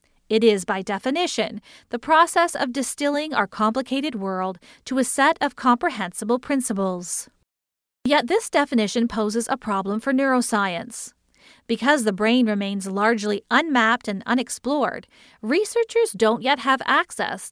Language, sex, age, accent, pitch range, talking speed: English, female, 40-59, American, 210-270 Hz, 130 wpm